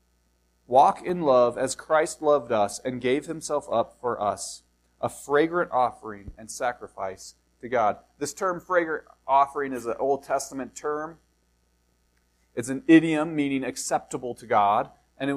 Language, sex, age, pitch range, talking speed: English, male, 30-49, 135-195 Hz, 150 wpm